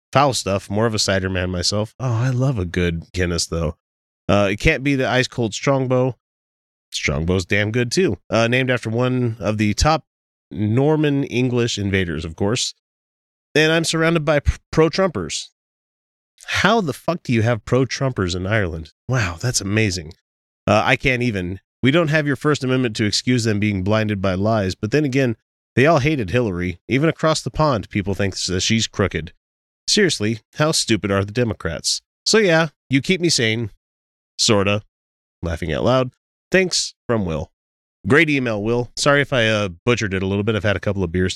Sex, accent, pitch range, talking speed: male, American, 95-125 Hz, 180 wpm